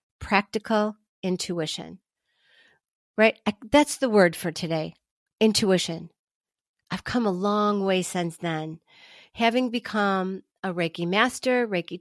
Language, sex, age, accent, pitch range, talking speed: English, female, 40-59, American, 175-240 Hz, 110 wpm